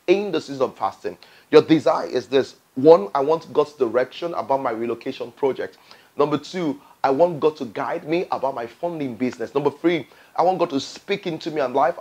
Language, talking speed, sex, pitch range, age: English, 200 wpm, male, 135-175 Hz, 30-49